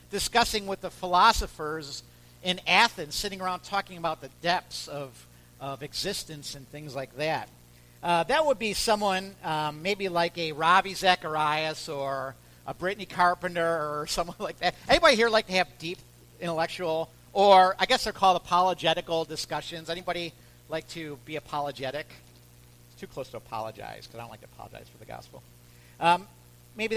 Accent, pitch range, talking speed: American, 145-215 Hz, 160 wpm